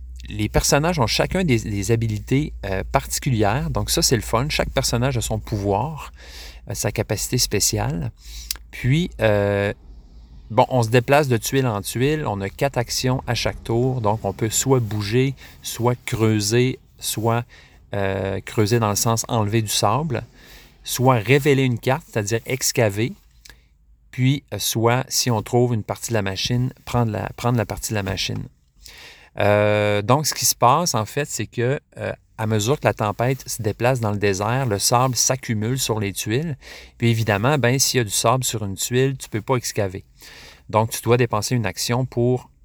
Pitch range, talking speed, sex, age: 100-130 Hz, 180 wpm, male, 40-59